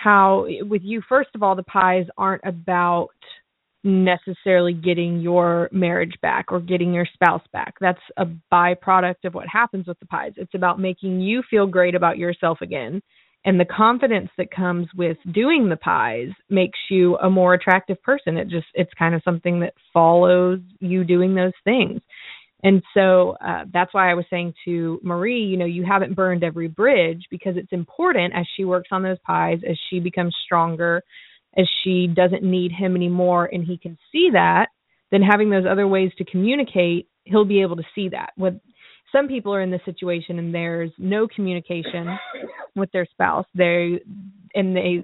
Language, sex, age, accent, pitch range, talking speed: English, female, 20-39, American, 175-195 Hz, 180 wpm